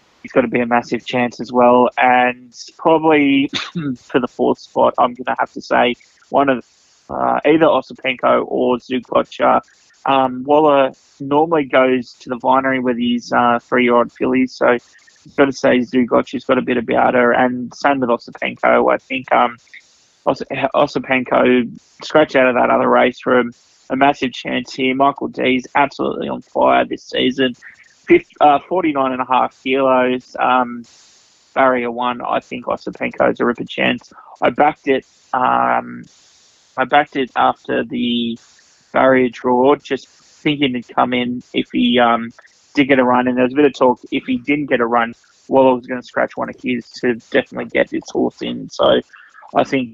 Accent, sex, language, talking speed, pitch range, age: Australian, male, English, 180 wpm, 120-135 Hz, 20-39